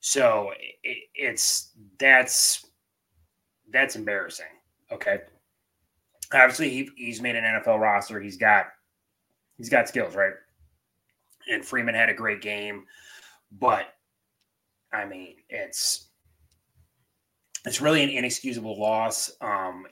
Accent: American